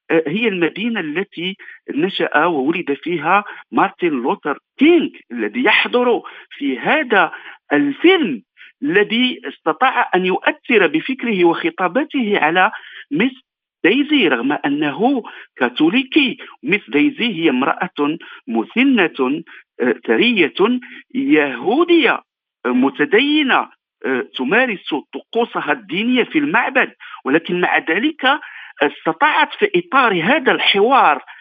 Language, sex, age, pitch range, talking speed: Arabic, male, 50-69, 190-300 Hz, 90 wpm